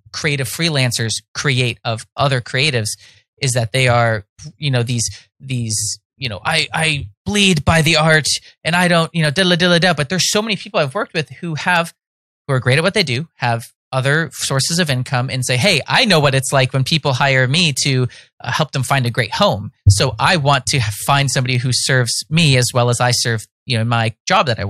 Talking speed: 225 wpm